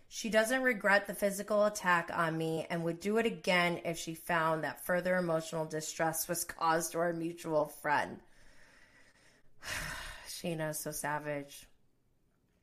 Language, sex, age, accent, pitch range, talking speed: English, female, 20-39, American, 155-200 Hz, 140 wpm